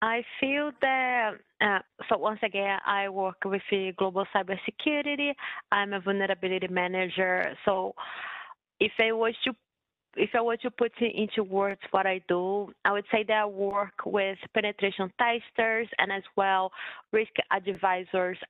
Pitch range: 195-225 Hz